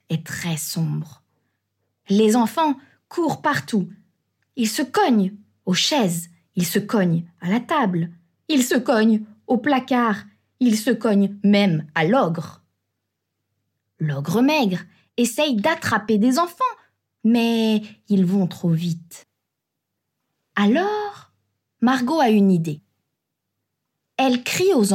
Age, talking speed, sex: 20-39, 115 wpm, female